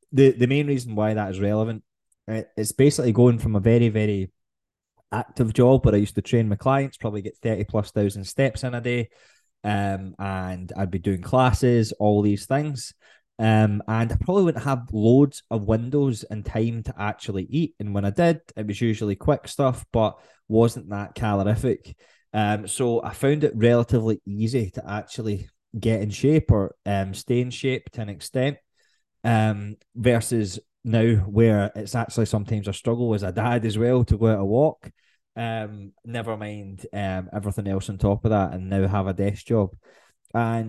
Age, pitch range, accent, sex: 20-39, 105-125 Hz, British, male